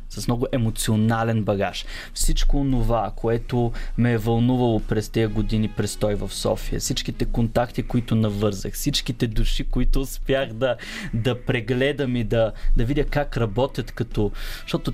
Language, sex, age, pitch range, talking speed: Bulgarian, male, 20-39, 110-140 Hz, 140 wpm